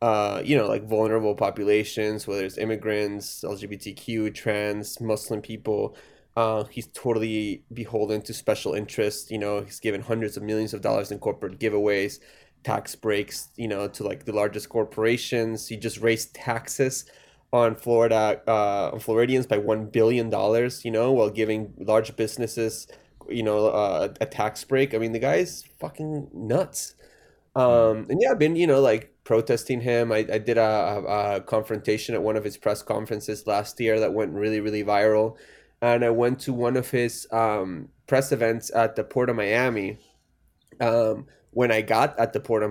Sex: male